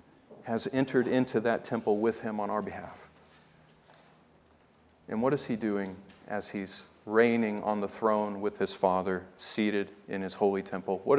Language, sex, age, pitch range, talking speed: English, male, 40-59, 105-130 Hz, 160 wpm